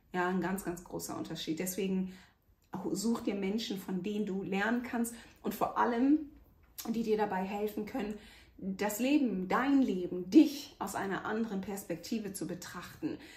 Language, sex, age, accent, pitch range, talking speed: German, female, 30-49, German, 185-230 Hz, 155 wpm